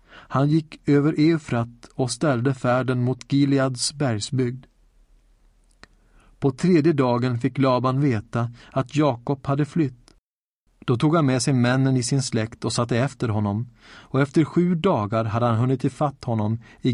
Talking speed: 150 wpm